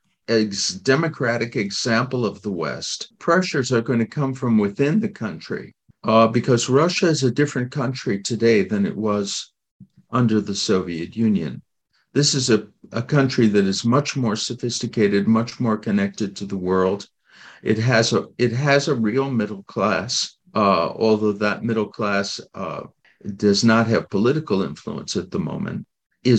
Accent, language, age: American, English, 50-69